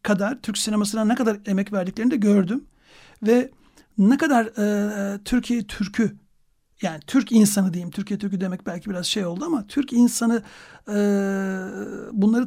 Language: Turkish